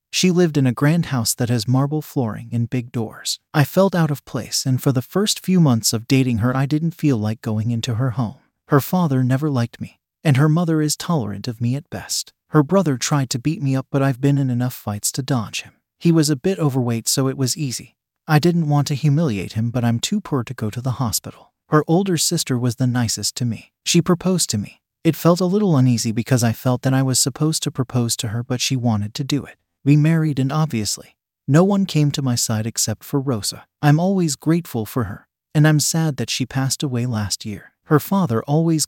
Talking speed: 235 wpm